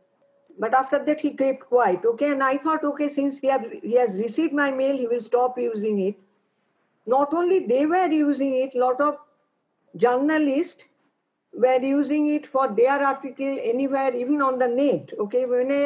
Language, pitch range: English, 245-300 Hz